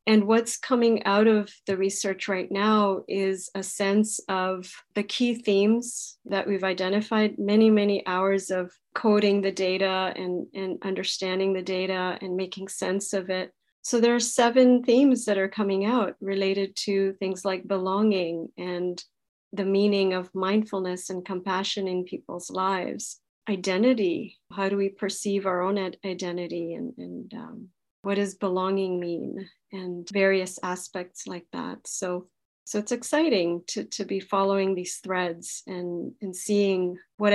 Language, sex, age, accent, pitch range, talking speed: English, female, 40-59, American, 185-200 Hz, 155 wpm